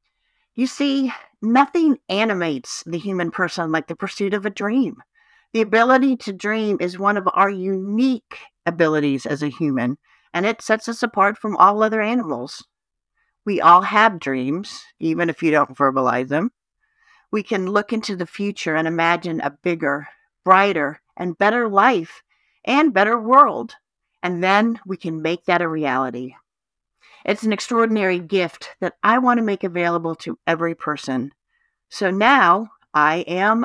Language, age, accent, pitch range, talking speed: English, 50-69, American, 170-230 Hz, 155 wpm